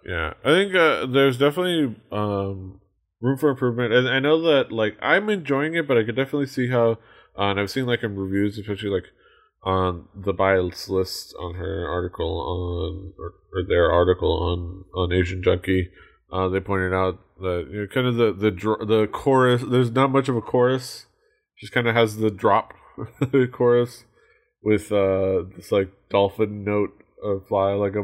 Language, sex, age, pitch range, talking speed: English, male, 20-39, 95-120 Hz, 185 wpm